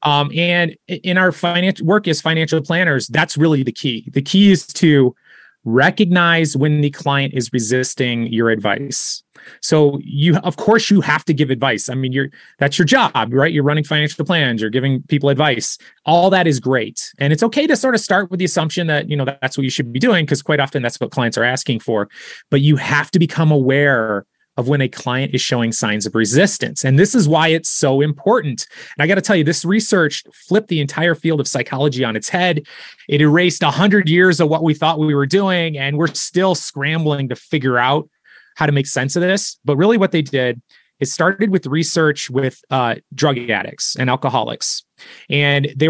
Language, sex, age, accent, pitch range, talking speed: English, male, 30-49, American, 135-175 Hz, 210 wpm